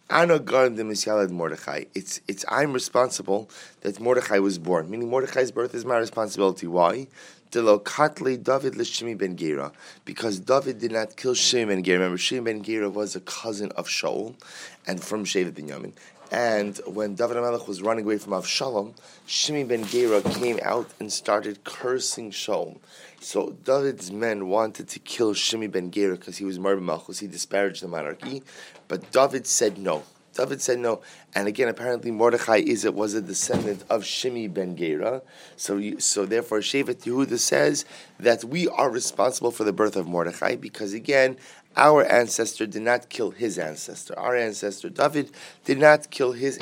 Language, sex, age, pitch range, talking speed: English, male, 20-39, 100-130 Hz, 165 wpm